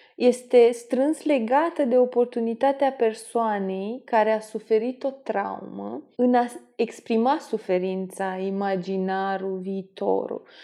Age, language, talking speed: 20-39, Romanian, 95 wpm